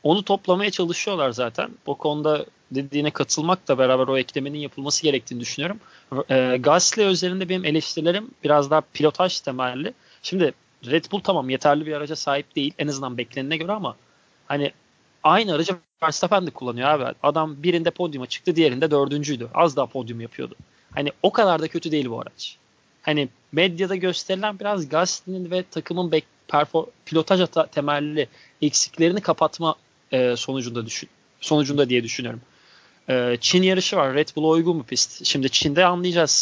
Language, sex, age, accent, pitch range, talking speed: Turkish, male, 30-49, native, 135-170 Hz, 150 wpm